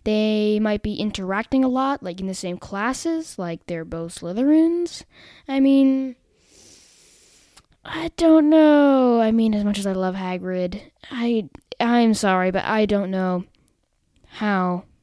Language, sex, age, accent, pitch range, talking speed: English, female, 10-29, American, 190-275 Hz, 150 wpm